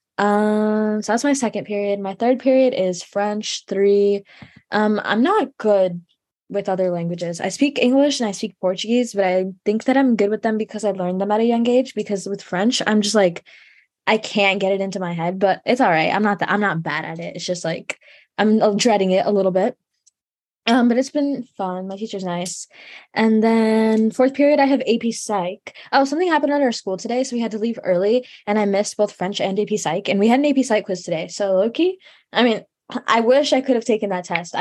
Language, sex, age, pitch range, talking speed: English, female, 10-29, 190-240 Hz, 230 wpm